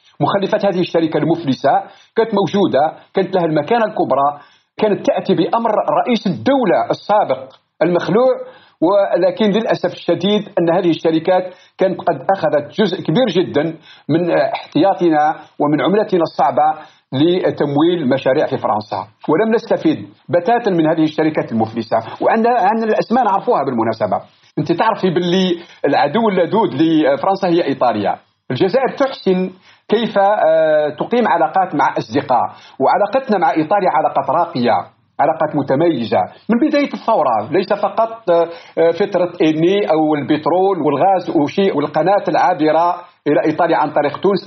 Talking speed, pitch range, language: 120 wpm, 160-220 Hz, Arabic